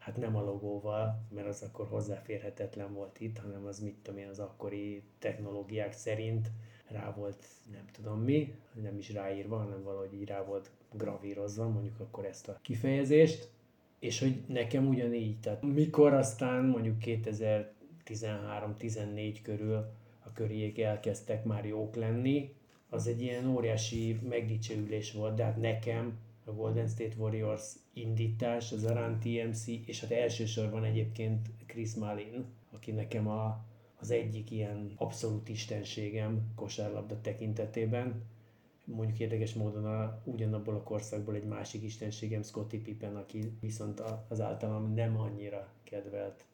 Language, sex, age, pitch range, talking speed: Hungarian, male, 30-49, 105-115 Hz, 135 wpm